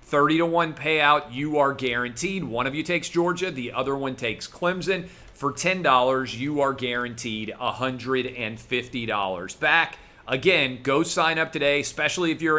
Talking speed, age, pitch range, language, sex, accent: 155 wpm, 40-59, 120-155 Hz, English, male, American